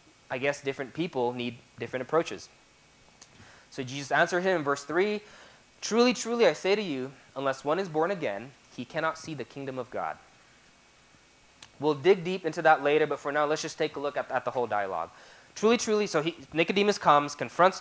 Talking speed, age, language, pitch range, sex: 190 wpm, 20-39, English, 130-180 Hz, male